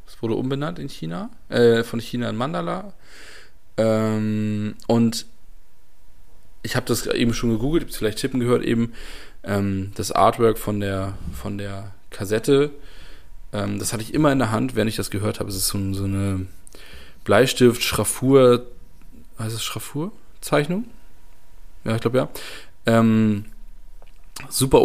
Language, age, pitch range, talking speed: German, 20-39, 100-120 Hz, 145 wpm